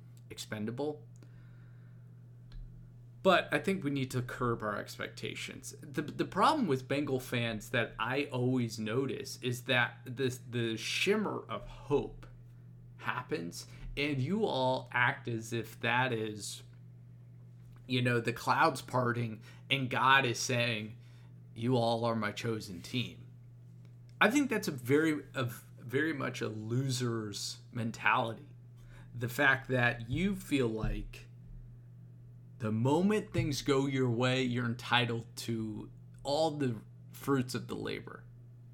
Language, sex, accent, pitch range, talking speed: English, male, American, 115-135 Hz, 130 wpm